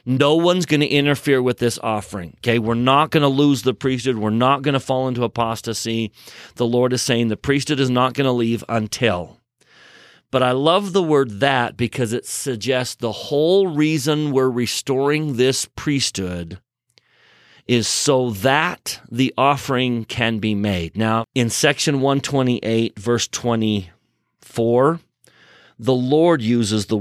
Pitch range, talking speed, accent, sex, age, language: 110-135 Hz, 155 wpm, American, male, 40-59, English